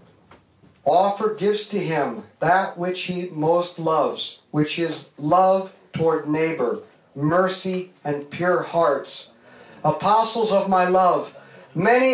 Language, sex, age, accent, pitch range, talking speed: English, male, 50-69, American, 165-205 Hz, 115 wpm